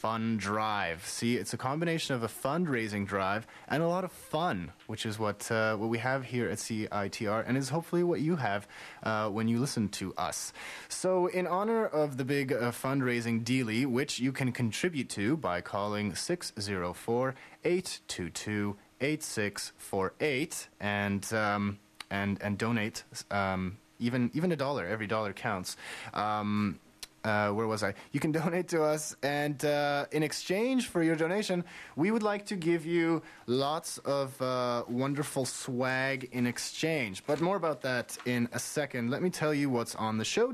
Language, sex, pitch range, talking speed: English, male, 110-150 Hz, 165 wpm